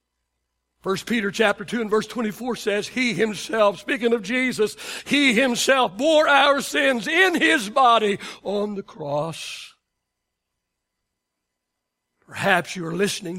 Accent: American